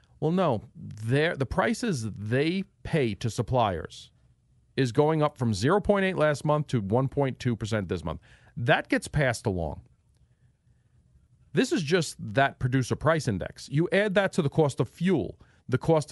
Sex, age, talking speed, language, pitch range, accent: male, 40-59, 150 wpm, English, 115-155 Hz, American